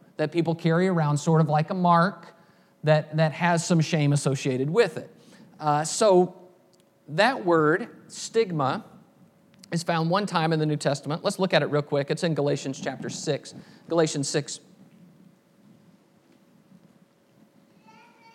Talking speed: 140 wpm